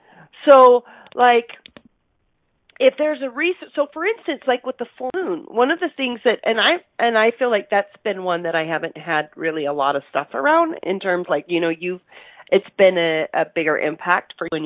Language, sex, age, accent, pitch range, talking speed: English, female, 40-59, American, 185-270 Hz, 215 wpm